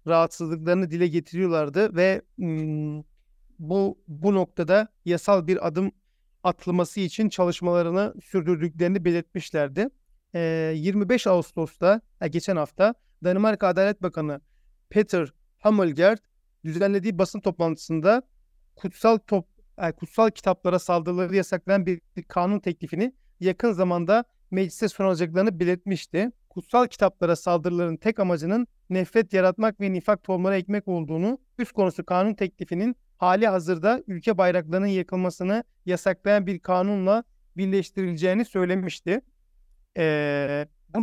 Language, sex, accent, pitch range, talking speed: Turkish, male, native, 175-205 Hz, 100 wpm